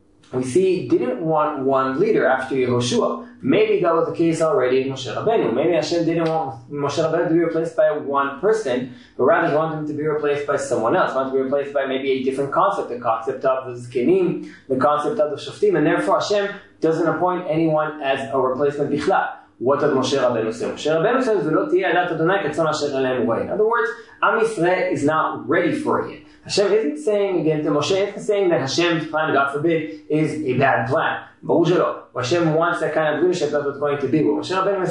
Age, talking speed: 20-39, 195 wpm